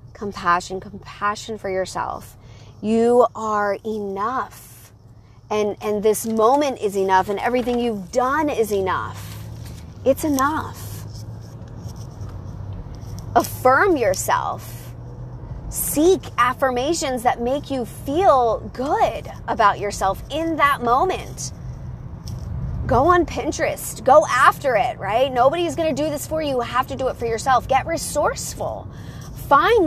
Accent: American